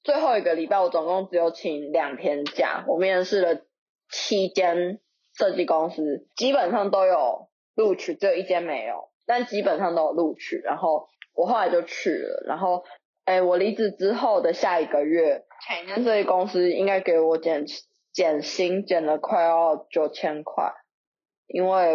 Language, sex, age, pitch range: Chinese, female, 20-39, 165-205 Hz